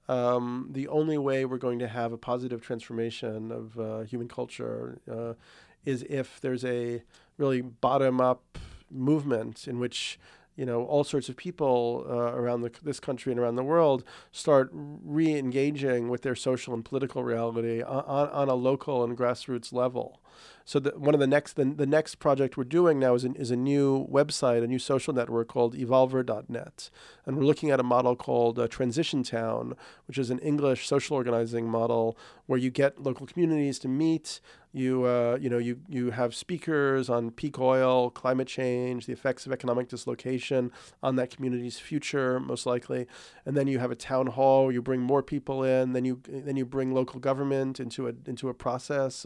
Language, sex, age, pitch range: English, male, 40-59, 120-140 Hz